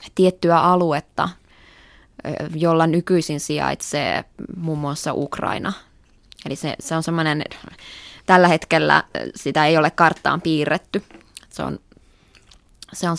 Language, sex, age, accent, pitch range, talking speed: Finnish, female, 20-39, native, 150-180 Hz, 105 wpm